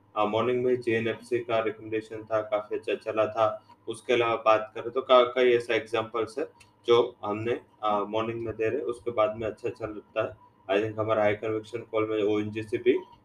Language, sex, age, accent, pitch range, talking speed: English, male, 20-39, Indian, 110-125 Hz, 225 wpm